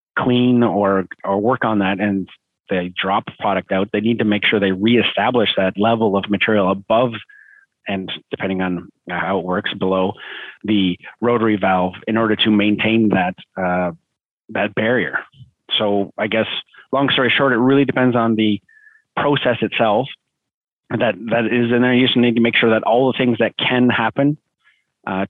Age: 30-49